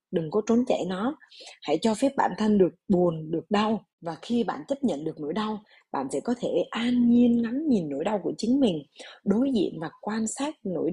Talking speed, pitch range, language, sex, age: 225 wpm, 180-245 Hz, Vietnamese, female, 20-39